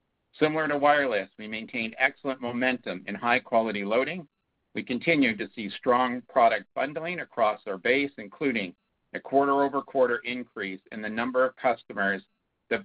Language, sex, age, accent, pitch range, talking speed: English, male, 50-69, American, 115-140 Hz, 145 wpm